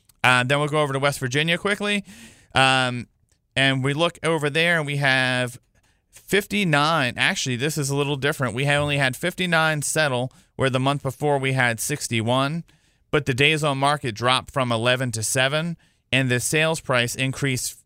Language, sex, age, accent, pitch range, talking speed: English, male, 40-59, American, 120-145 Hz, 190 wpm